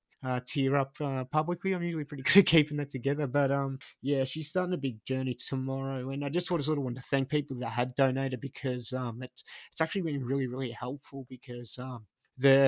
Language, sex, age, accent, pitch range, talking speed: English, male, 30-49, Australian, 120-145 Hz, 225 wpm